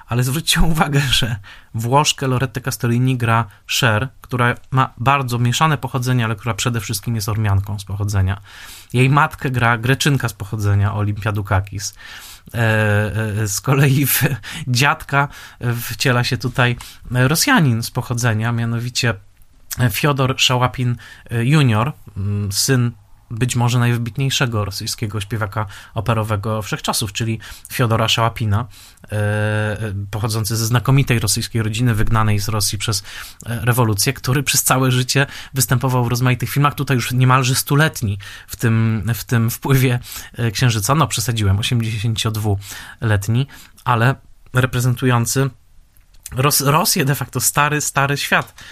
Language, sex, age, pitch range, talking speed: Polish, male, 20-39, 110-130 Hz, 115 wpm